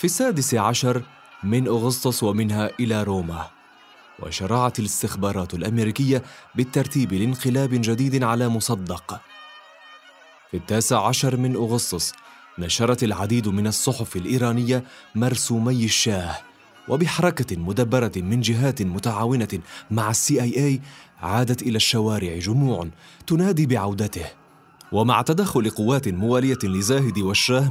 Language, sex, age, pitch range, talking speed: Arabic, male, 30-49, 100-130 Hz, 105 wpm